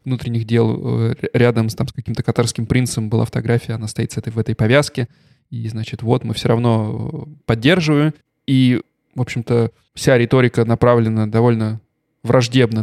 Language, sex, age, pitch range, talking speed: Russian, male, 20-39, 115-135 Hz, 155 wpm